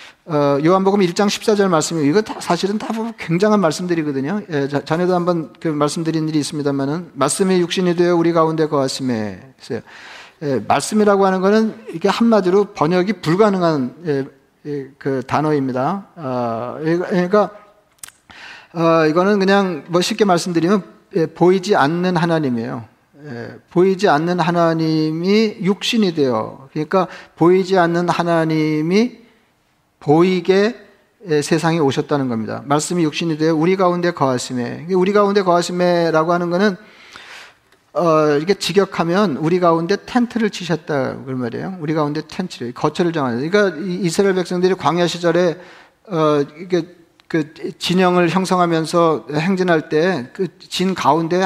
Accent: native